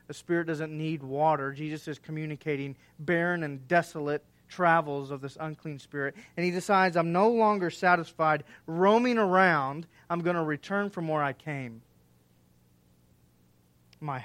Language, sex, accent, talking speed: English, male, American, 145 wpm